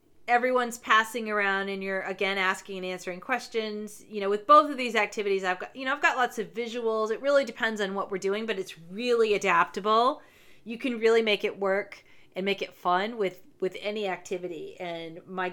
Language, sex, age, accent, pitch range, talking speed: English, female, 30-49, American, 185-240 Hz, 205 wpm